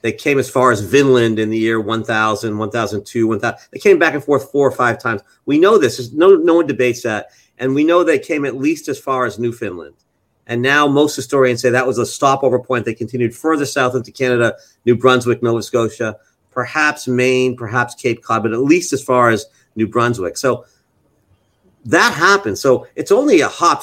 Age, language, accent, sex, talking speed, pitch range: 40-59, English, American, male, 205 wpm, 120-155 Hz